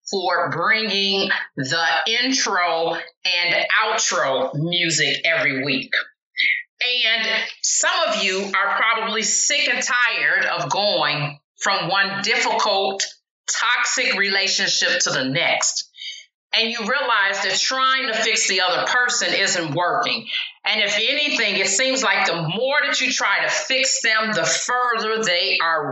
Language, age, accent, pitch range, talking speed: English, 40-59, American, 190-260 Hz, 135 wpm